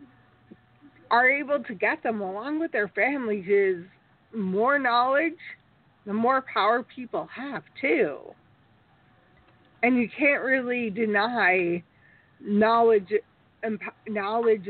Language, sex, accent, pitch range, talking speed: English, female, American, 190-250 Hz, 100 wpm